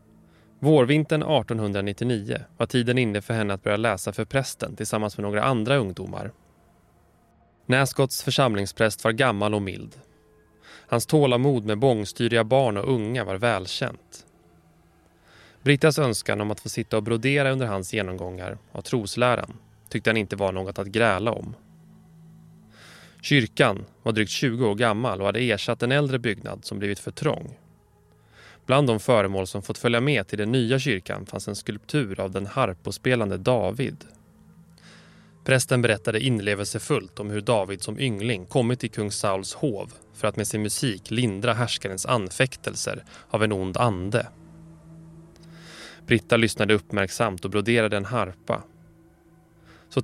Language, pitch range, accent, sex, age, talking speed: Swedish, 100-130 Hz, native, male, 20-39, 145 wpm